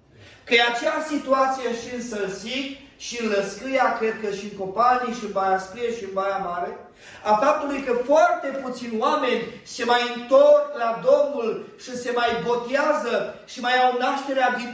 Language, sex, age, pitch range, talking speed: Romanian, male, 30-49, 220-270 Hz, 170 wpm